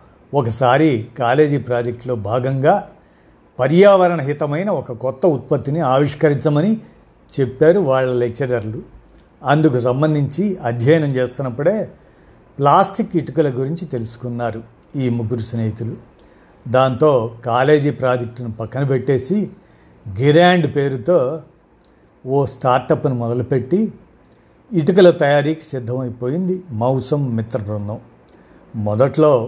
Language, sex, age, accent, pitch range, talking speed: Telugu, male, 50-69, native, 120-160 Hz, 85 wpm